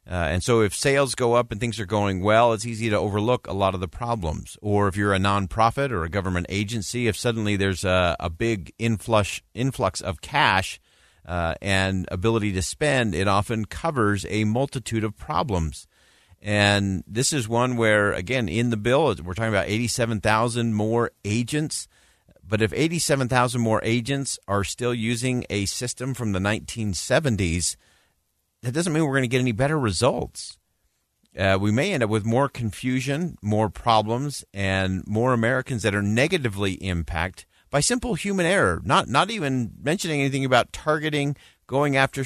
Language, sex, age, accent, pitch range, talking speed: English, male, 40-59, American, 95-125 Hz, 170 wpm